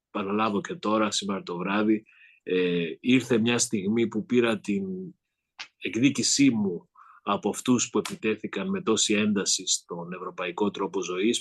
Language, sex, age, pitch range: Greek, male, 30-49, 100-125 Hz